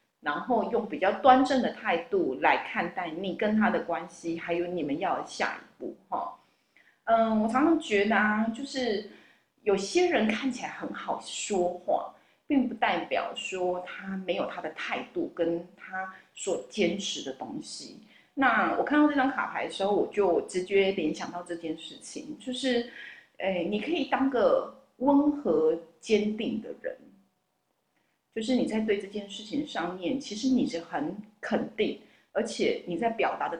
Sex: female